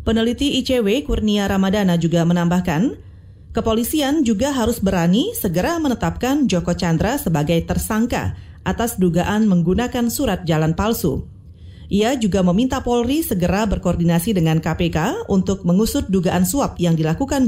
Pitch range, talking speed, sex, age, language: 180-240 Hz, 125 wpm, female, 30-49, Indonesian